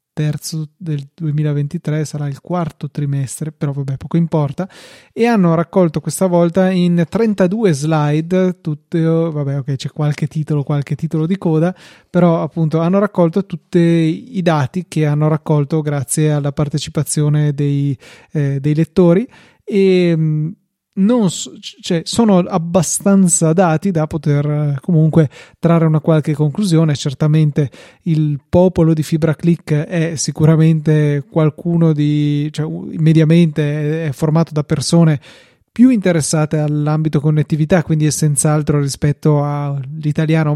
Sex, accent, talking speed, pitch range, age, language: male, native, 125 wpm, 150-170 Hz, 30-49, Italian